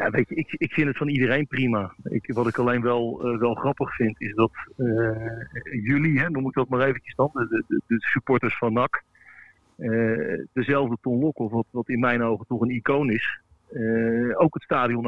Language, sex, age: Dutch, male, 50-69